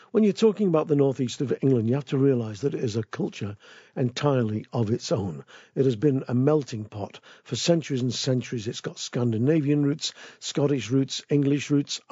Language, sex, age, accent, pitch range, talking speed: English, male, 50-69, British, 120-145 Hz, 195 wpm